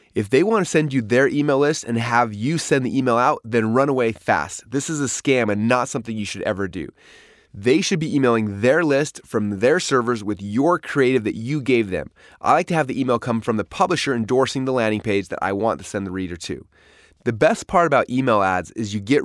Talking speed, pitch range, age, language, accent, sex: 245 wpm, 105-140 Hz, 20-39, English, American, male